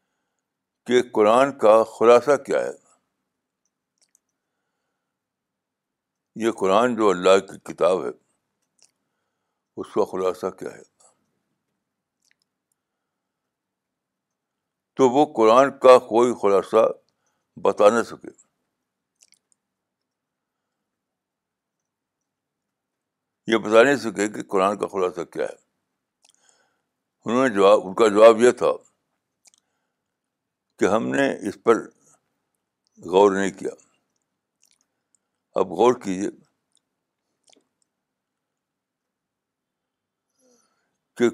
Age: 60-79